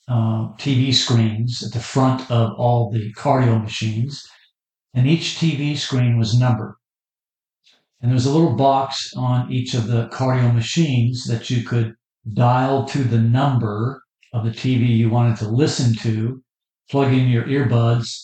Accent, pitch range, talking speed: American, 115-135 Hz, 160 wpm